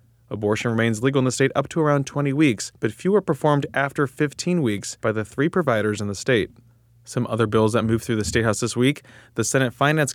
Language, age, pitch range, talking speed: English, 20-39, 115-145 Hz, 220 wpm